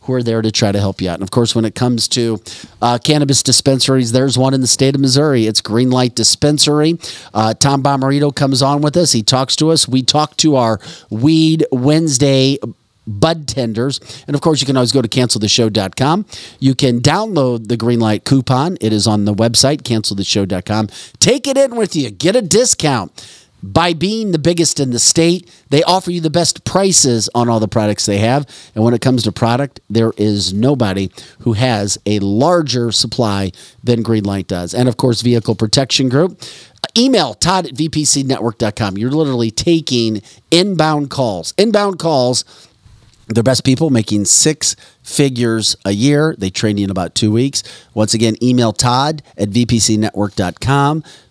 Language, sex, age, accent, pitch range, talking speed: English, male, 40-59, American, 110-145 Hz, 175 wpm